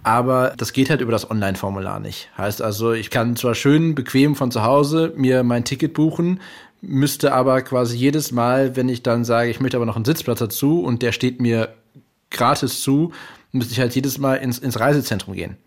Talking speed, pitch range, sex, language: 205 wpm, 115-135 Hz, male, German